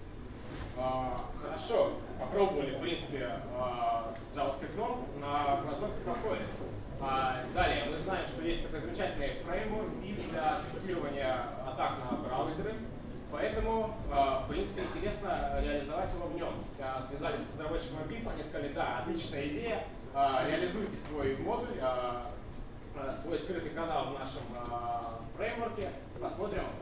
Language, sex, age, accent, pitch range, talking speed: Russian, male, 20-39, native, 125-160 Hz, 110 wpm